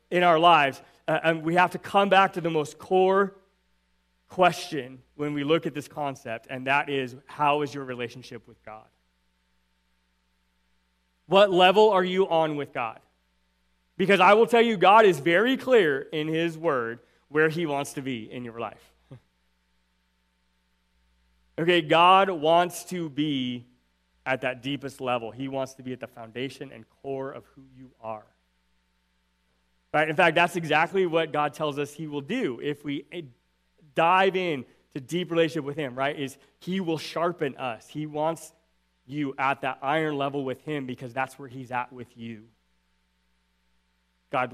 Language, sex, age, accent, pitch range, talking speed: English, male, 30-49, American, 110-160 Hz, 165 wpm